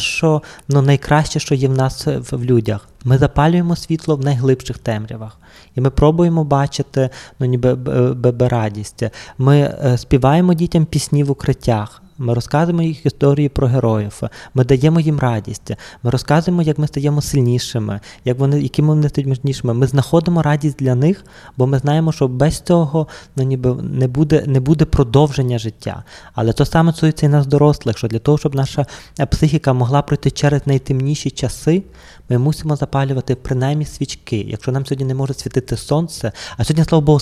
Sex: male